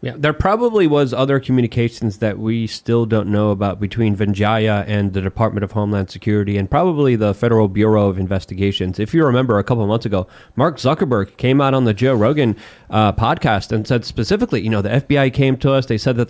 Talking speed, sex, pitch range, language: 215 wpm, male, 110-145 Hz, English